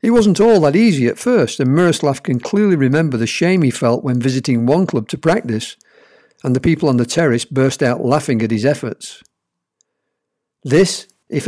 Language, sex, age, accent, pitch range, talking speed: English, male, 50-69, British, 130-170 Hz, 190 wpm